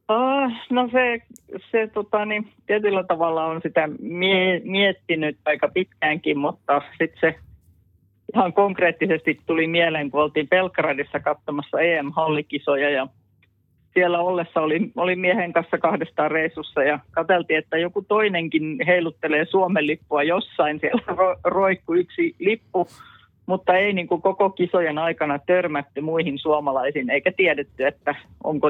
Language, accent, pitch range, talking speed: Finnish, native, 145-185 Hz, 130 wpm